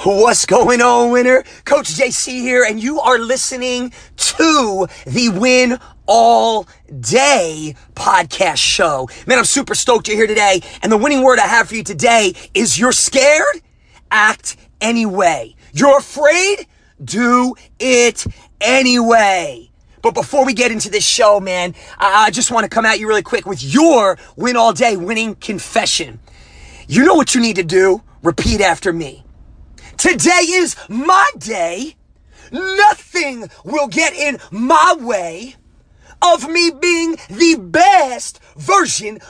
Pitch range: 225-325 Hz